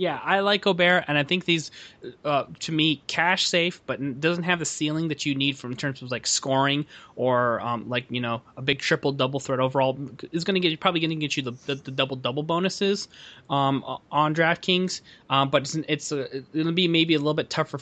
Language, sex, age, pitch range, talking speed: English, male, 20-39, 125-145 Hz, 230 wpm